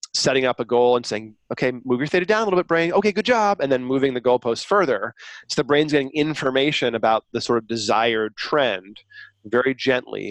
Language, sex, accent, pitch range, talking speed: English, male, American, 115-140 Hz, 215 wpm